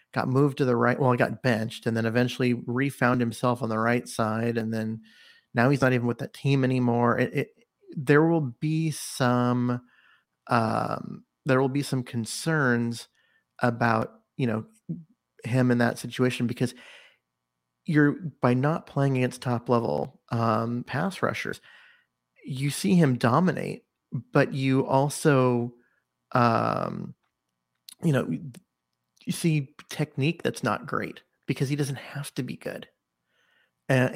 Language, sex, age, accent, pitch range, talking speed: English, male, 40-59, American, 120-140 Hz, 145 wpm